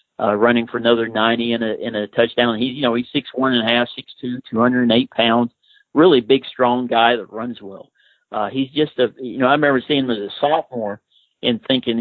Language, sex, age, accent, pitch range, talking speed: English, male, 50-69, American, 115-135 Hz, 240 wpm